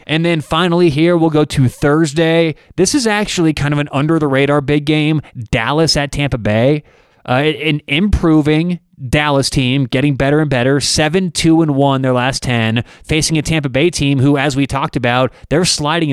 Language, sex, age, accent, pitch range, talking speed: English, male, 20-39, American, 130-160 Hz, 170 wpm